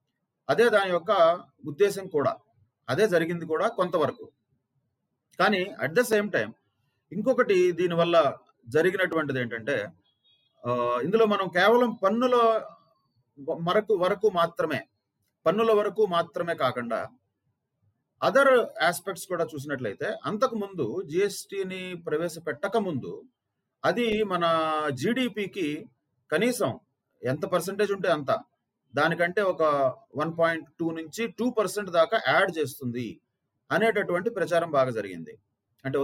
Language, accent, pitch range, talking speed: Telugu, native, 140-205 Hz, 100 wpm